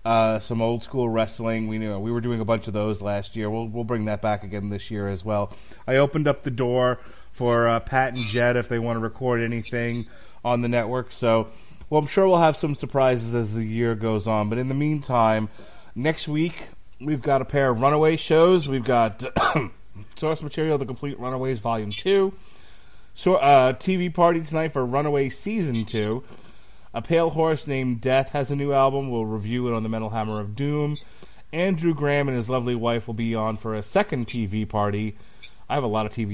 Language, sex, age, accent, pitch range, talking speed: English, male, 30-49, American, 110-135 Hz, 210 wpm